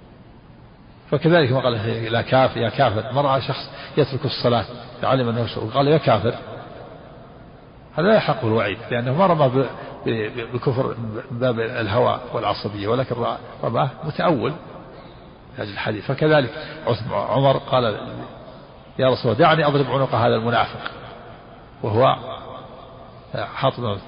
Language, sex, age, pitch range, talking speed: Arabic, male, 50-69, 115-140 Hz, 115 wpm